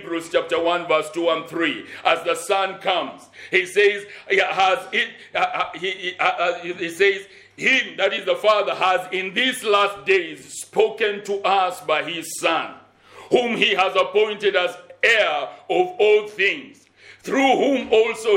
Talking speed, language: 160 wpm, English